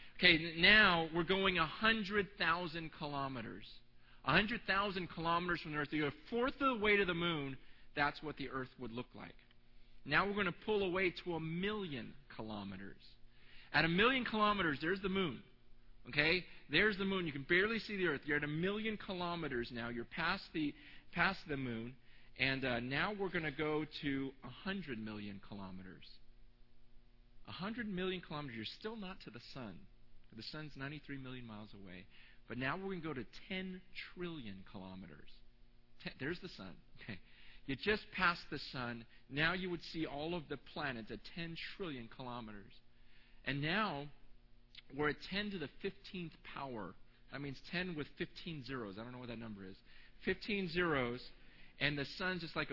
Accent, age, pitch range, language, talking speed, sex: American, 40-59, 120-175 Hz, English, 170 wpm, male